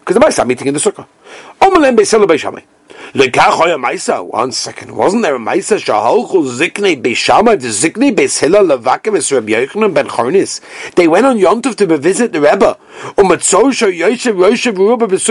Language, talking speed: English, 65 wpm